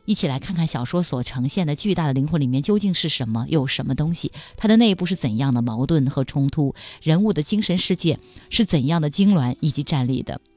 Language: Chinese